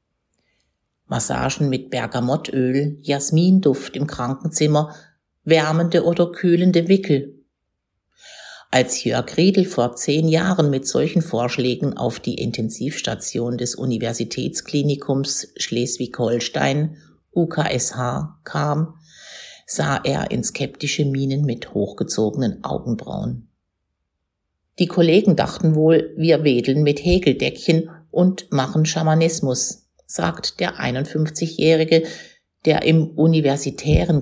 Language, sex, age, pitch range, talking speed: German, female, 50-69, 125-160 Hz, 90 wpm